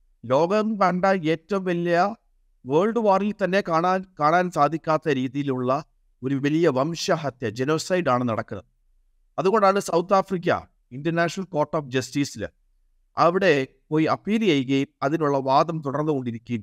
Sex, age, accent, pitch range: male, 50-69, native, 130-185 Hz